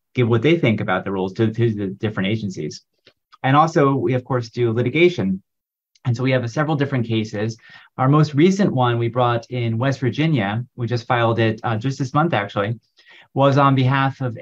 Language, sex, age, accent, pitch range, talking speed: English, male, 30-49, American, 110-135 Hz, 200 wpm